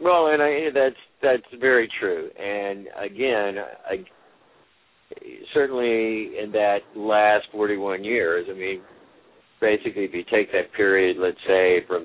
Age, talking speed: 60-79, 140 wpm